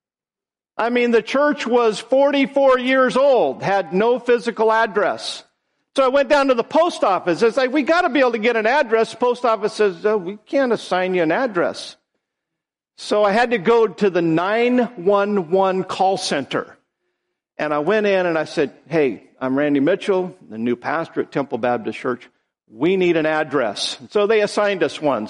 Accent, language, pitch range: American, English, 190-240 Hz